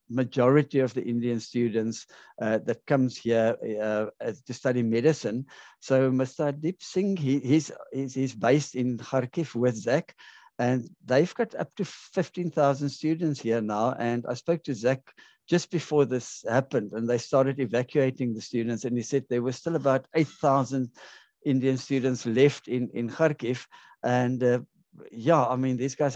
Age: 60-79